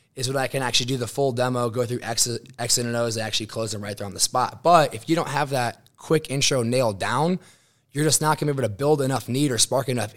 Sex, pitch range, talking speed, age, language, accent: male, 110-130 Hz, 285 wpm, 20-39, English, American